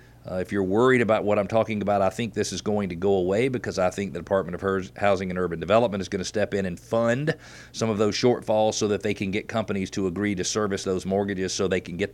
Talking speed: 265 wpm